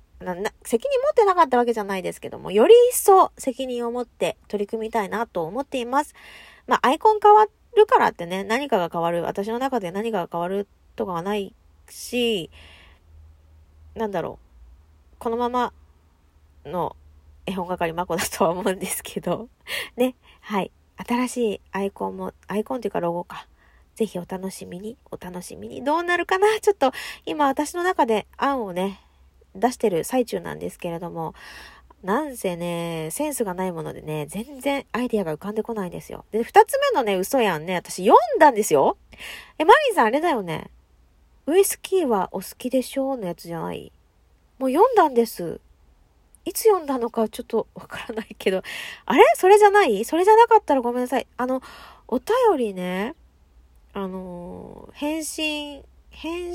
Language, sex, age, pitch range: Japanese, female, 20-39, 175-285 Hz